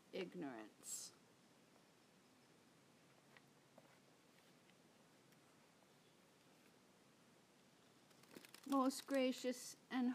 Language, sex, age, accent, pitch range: English, female, 60-79, American, 205-235 Hz